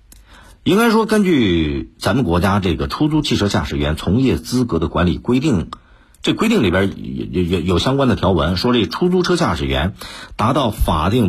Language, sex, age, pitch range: Chinese, male, 50-69, 80-120 Hz